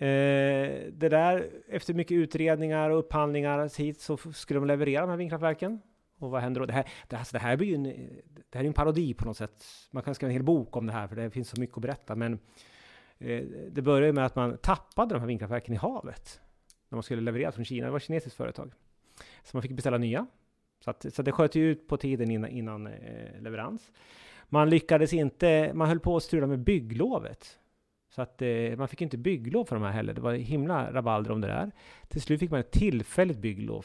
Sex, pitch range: male, 115-150 Hz